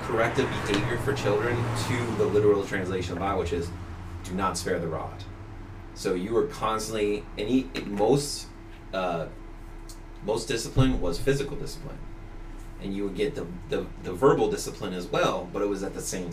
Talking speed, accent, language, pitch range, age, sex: 170 wpm, American, English, 85-110 Hz, 30-49, male